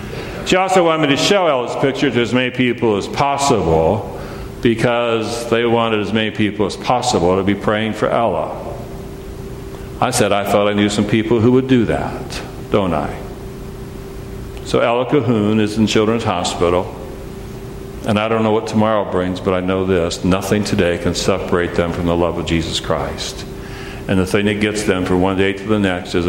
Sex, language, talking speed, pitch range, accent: male, English, 190 wpm, 90-110 Hz, American